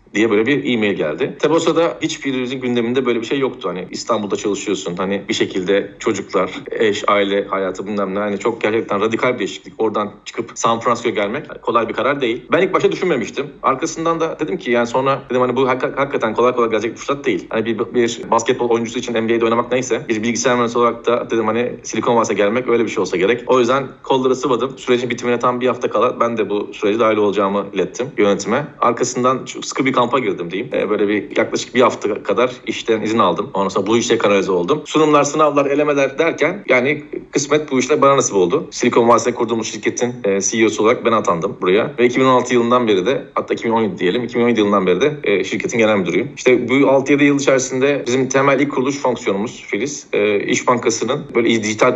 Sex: male